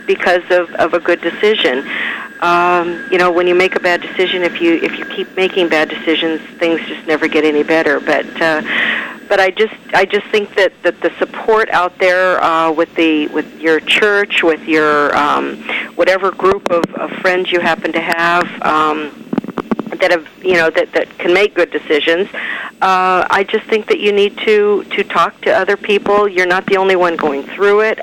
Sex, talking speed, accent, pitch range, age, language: female, 200 wpm, American, 160-195 Hz, 50-69, English